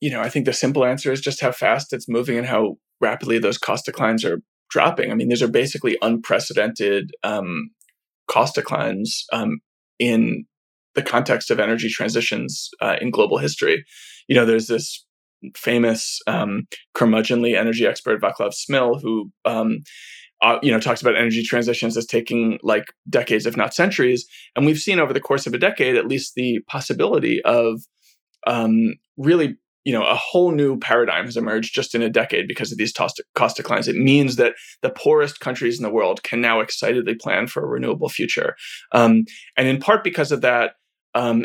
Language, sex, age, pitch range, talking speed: English, male, 20-39, 115-155 Hz, 180 wpm